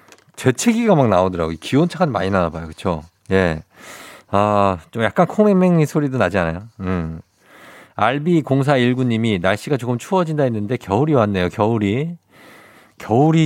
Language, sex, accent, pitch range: Korean, male, native, 100-145 Hz